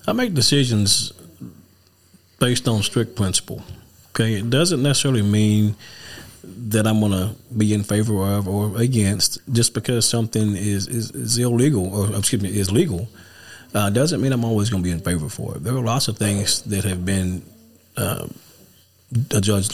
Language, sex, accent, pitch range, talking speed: English, male, American, 95-120 Hz, 165 wpm